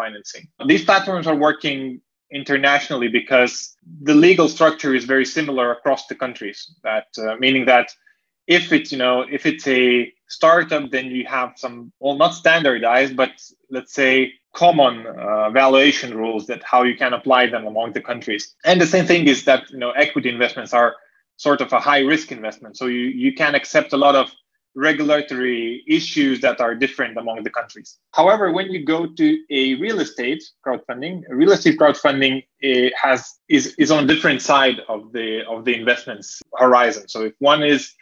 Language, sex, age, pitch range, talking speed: Russian, male, 20-39, 125-160 Hz, 180 wpm